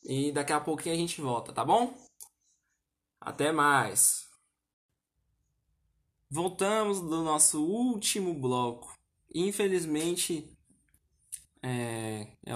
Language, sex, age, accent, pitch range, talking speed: Portuguese, male, 10-29, Brazilian, 120-140 Hz, 90 wpm